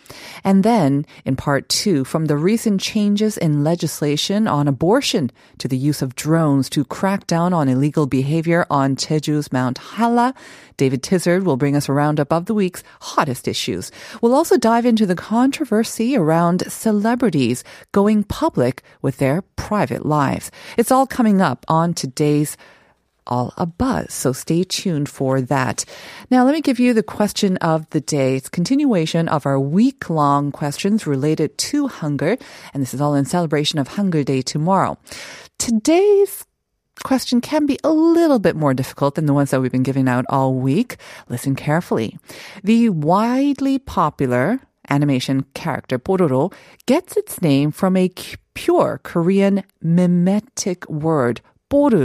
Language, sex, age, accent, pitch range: Korean, female, 40-59, American, 140-220 Hz